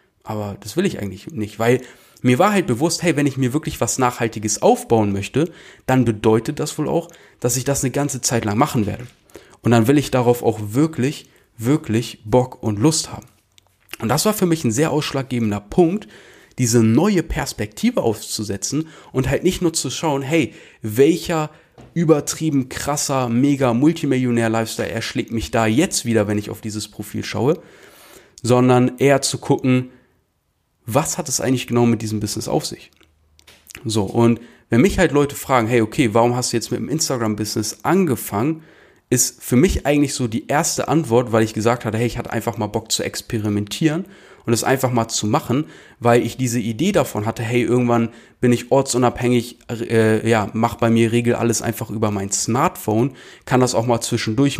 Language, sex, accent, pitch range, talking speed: German, male, German, 115-140 Hz, 180 wpm